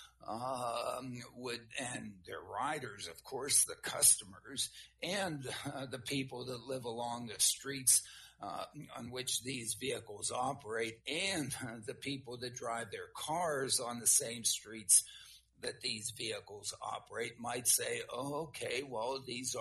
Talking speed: 140 wpm